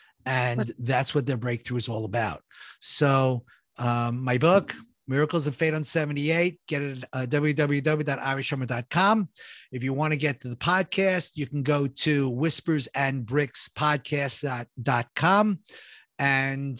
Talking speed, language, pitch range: 130 wpm, English, 130-170 Hz